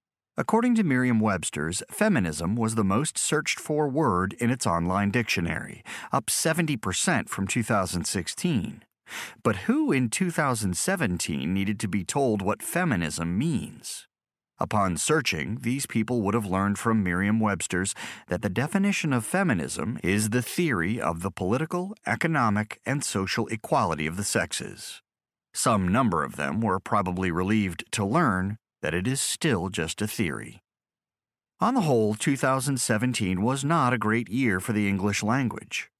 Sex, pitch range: male, 95-120 Hz